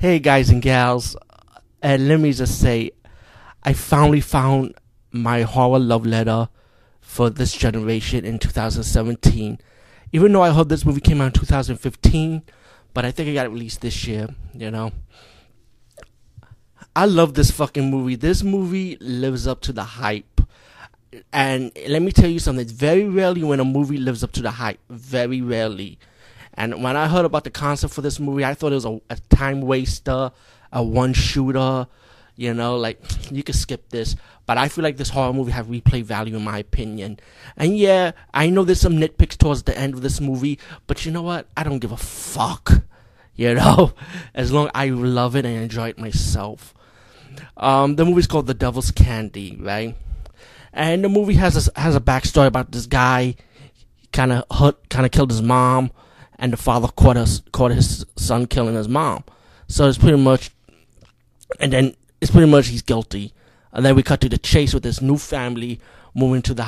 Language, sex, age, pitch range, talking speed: English, male, 30-49, 115-140 Hz, 190 wpm